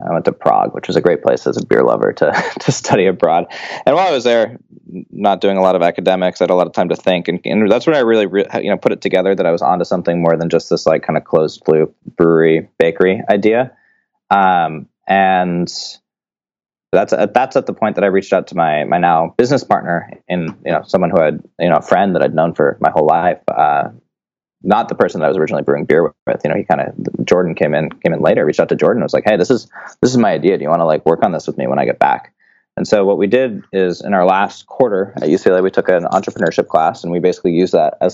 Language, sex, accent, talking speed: English, male, American, 270 wpm